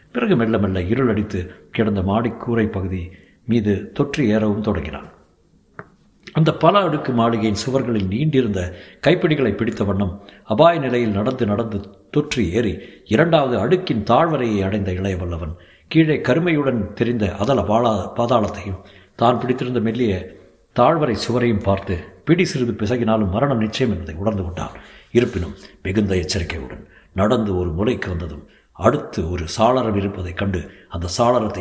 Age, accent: 60-79, native